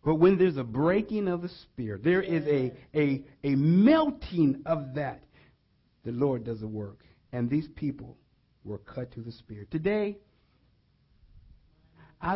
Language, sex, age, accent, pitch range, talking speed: English, male, 50-69, American, 135-225 Hz, 150 wpm